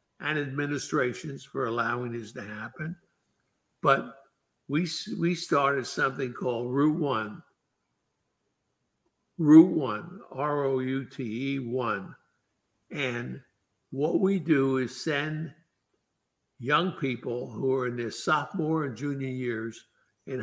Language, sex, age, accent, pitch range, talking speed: English, male, 60-79, American, 125-160 Hz, 120 wpm